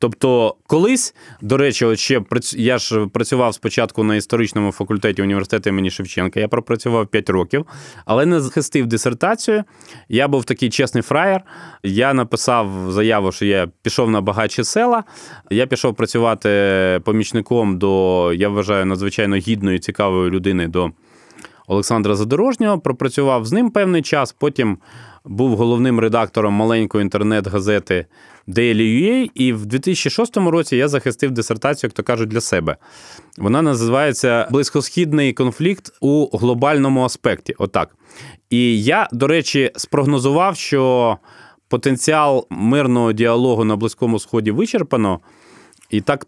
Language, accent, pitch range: Ukrainian, native, 105-140 Hz